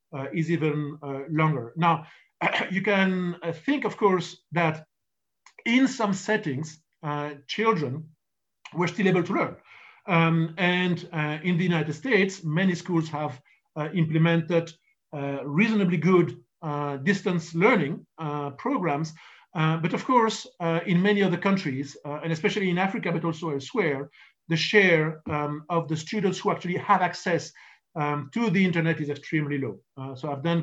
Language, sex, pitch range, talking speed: English, male, 145-180 Hz, 160 wpm